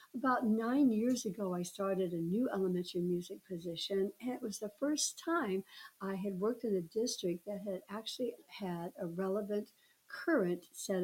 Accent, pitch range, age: American, 180-215 Hz, 60-79